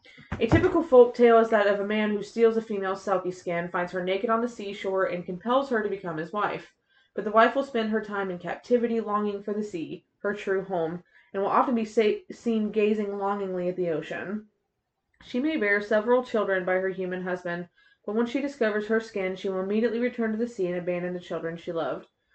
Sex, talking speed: female, 220 wpm